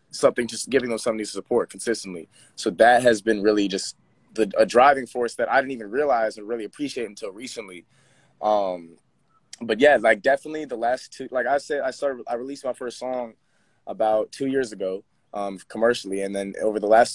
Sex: male